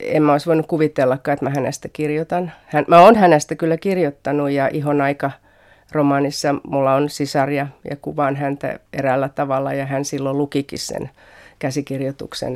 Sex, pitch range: female, 130-150 Hz